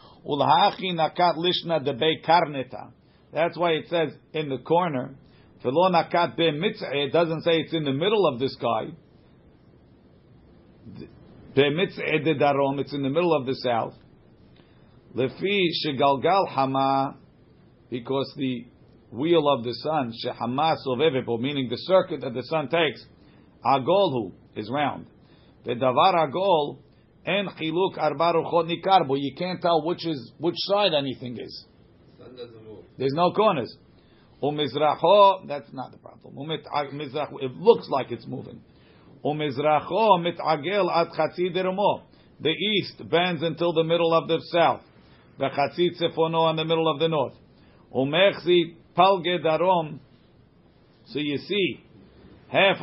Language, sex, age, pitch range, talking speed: English, male, 50-69, 135-175 Hz, 100 wpm